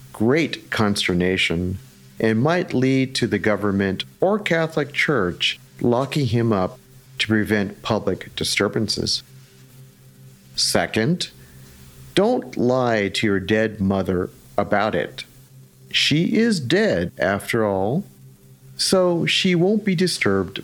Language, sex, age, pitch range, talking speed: English, male, 50-69, 95-130 Hz, 110 wpm